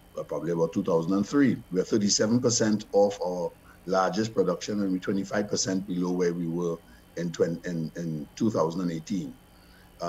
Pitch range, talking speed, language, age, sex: 95-115 Hz, 130 wpm, English, 60-79, male